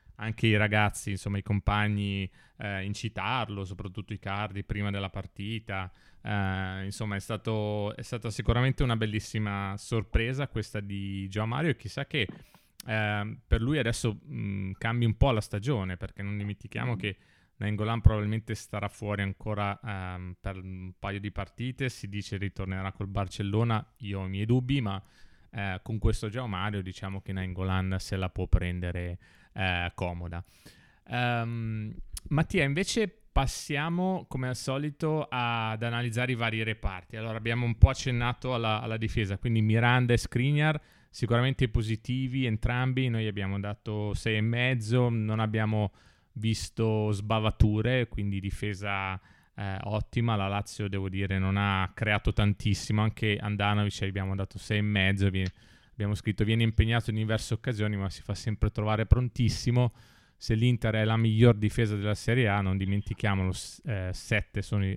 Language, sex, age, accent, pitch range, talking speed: Italian, male, 20-39, native, 100-115 Hz, 150 wpm